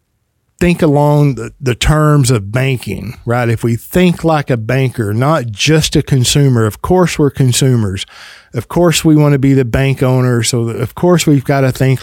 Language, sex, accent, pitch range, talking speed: English, male, American, 120-150 Hz, 190 wpm